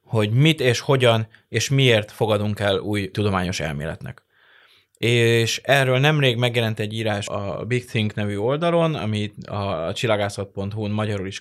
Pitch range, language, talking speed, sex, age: 100-125 Hz, Hungarian, 140 wpm, male, 20-39